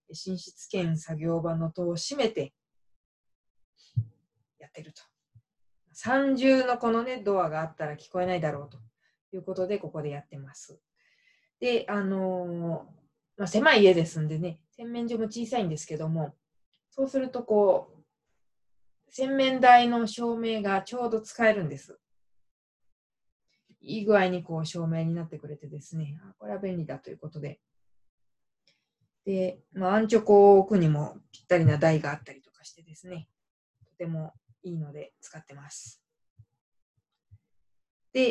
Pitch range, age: 155-220 Hz, 20-39